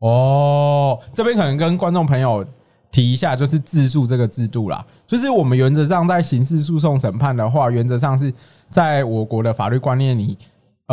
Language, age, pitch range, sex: Chinese, 20-39, 110-140 Hz, male